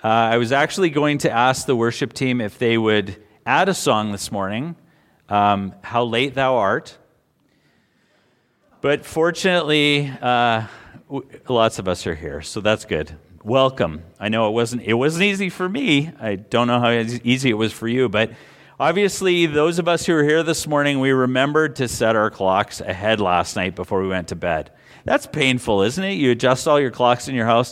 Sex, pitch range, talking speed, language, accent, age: male, 115-160 Hz, 200 wpm, English, American, 40-59